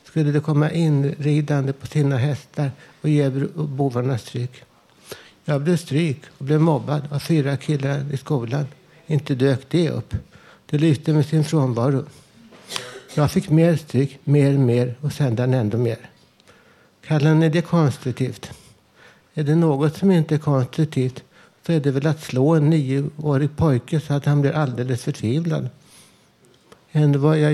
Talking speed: 155 wpm